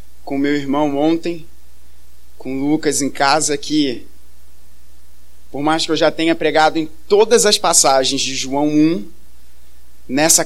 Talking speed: 140 wpm